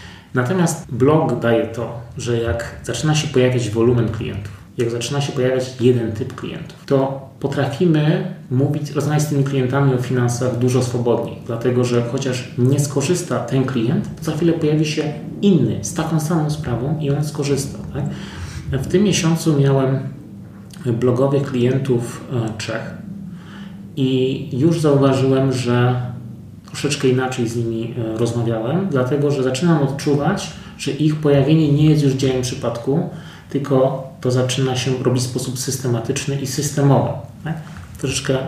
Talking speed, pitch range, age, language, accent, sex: 140 wpm, 120-145 Hz, 30-49, Polish, native, male